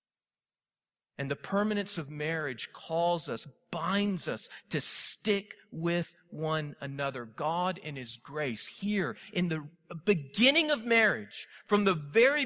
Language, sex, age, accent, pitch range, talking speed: English, male, 40-59, American, 135-195 Hz, 130 wpm